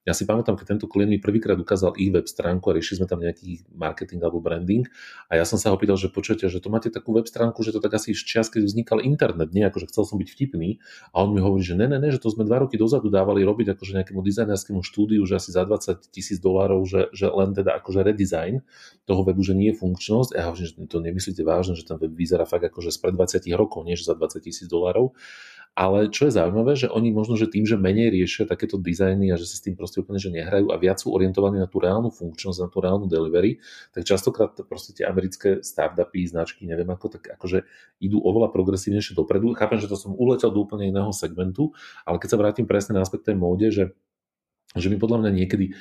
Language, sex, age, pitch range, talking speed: Slovak, male, 40-59, 90-105 Hz, 240 wpm